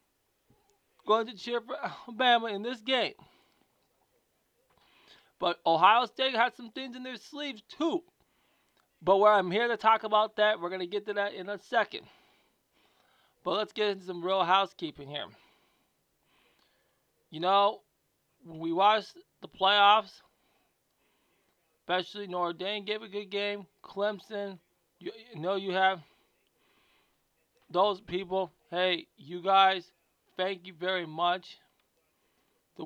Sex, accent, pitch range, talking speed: male, American, 180-220 Hz, 135 wpm